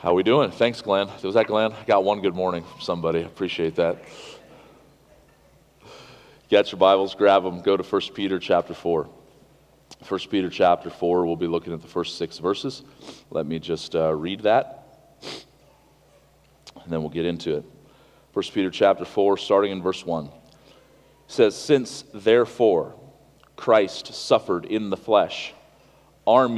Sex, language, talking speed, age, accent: male, English, 160 wpm, 40-59, American